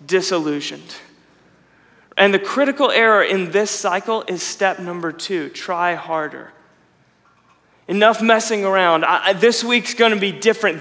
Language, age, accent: English, 30-49, American